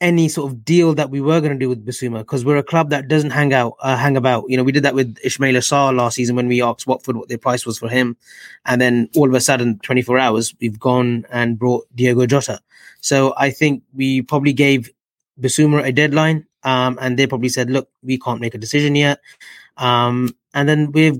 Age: 20-39